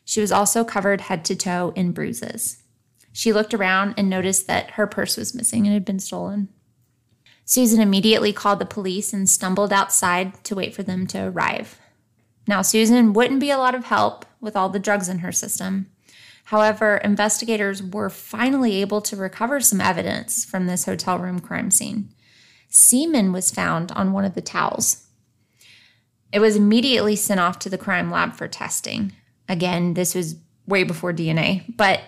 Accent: American